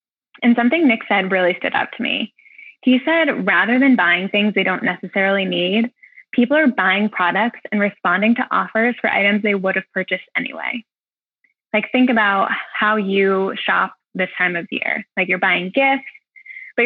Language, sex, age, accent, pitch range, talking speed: English, female, 20-39, American, 190-240 Hz, 175 wpm